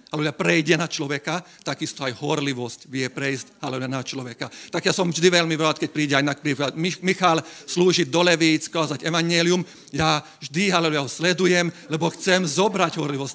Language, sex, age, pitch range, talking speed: Slovak, male, 40-59, 140-170 Hz, 175 wpm